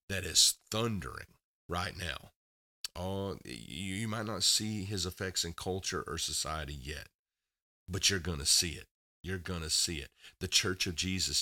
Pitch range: 80-95 Hz